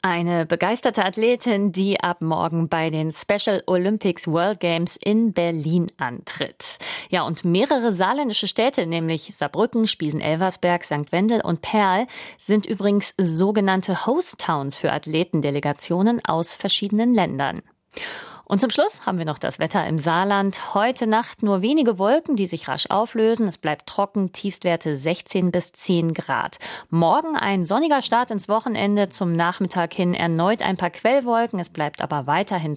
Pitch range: 165-210 Hz